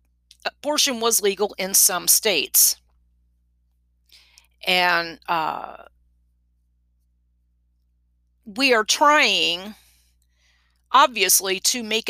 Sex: female